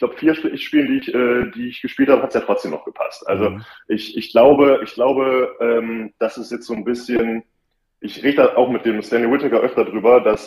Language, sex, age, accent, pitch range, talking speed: German, male, 20-39, German, 110-125 Hz, 240 wpm